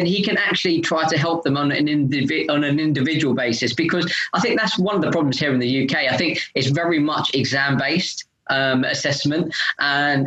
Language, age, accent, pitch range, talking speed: English, 20-39, British, 130-165 Hz, 205 wpm